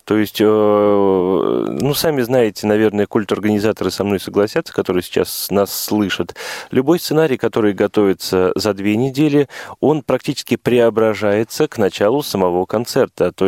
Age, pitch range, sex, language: 20-39, 100-115 Hz, male, Russian